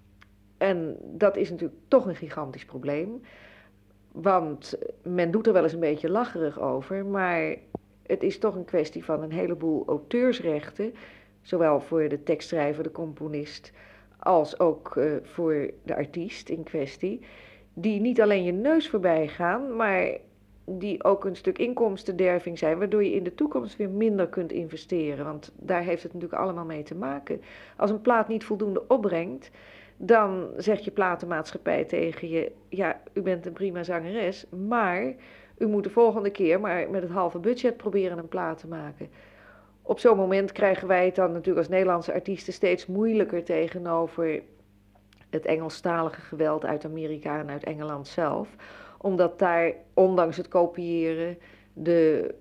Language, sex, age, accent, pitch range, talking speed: Dutch, female, 40-59, Dutch, 155-195 Hz, 155 wpm